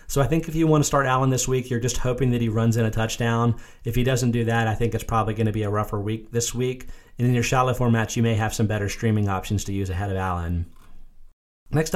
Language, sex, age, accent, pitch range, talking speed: English, male, 30-49, American, 110-125 Hz, 275 wpm